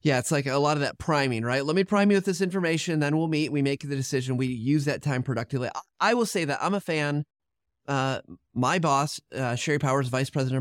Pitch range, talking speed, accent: 115-150 Hz, 245 wpm, American